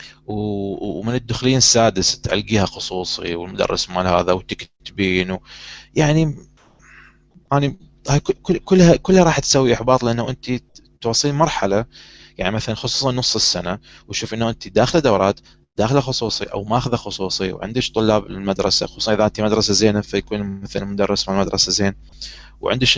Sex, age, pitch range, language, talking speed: male, 20-39, 95-125 Hz, Arabic, 135 wpm